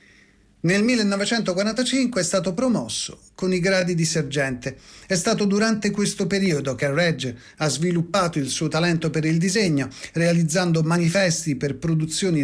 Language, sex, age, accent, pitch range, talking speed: Italian, male, 40-59, native, 145-200 Hz, 140 wpm